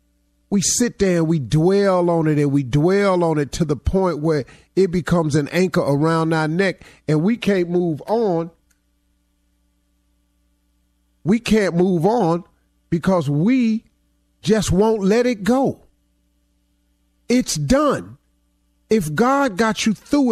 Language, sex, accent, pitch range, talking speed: English, male, American, 140-205 Hz, 140 wpm